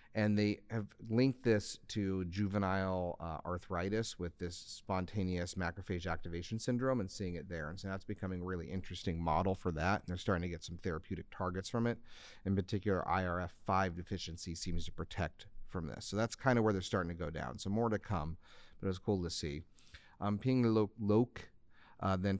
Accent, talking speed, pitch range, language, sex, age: American, 200 wpm, 85-105 Hz, English, male, 40-59